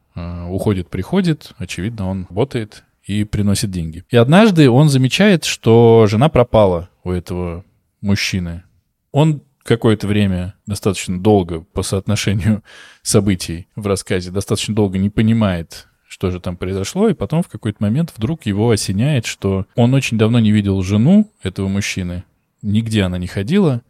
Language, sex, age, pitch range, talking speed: Russian, male, 20-39, 95-125 Hz, 140 wpm